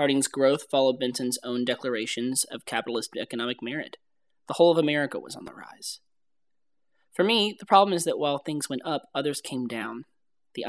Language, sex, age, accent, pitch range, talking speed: English, male, 20-39, American, 125-160 Hz, 180 wpm